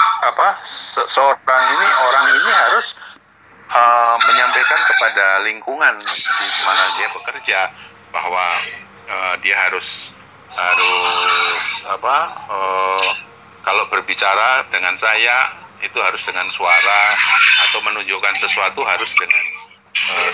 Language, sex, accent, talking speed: Indonesian, male, native, 105 wpm